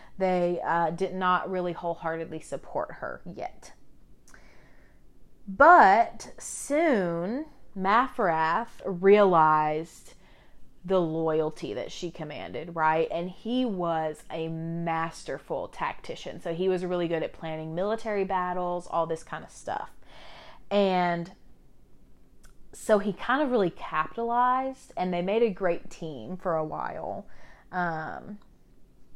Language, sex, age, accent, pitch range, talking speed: English, female, 30-49, American, 165-200 Hz, 115 wpm